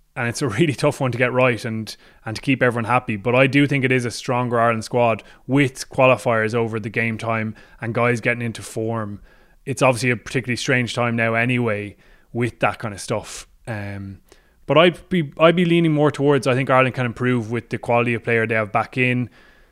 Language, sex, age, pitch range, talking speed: English, male, 20-39, 115-130 Hz, 220 wpm